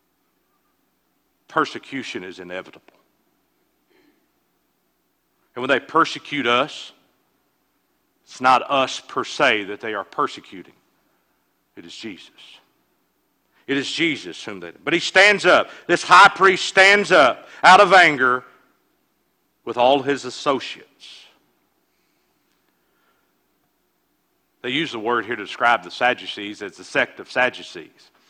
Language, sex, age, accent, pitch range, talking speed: English, male, 50-69, American, 130-200 Hz, 115 wpm